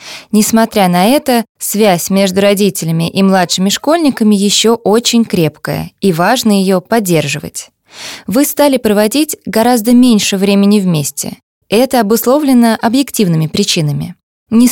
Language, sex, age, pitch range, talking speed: Russian, female, 20-39, 185-240 Hz, 115 wpm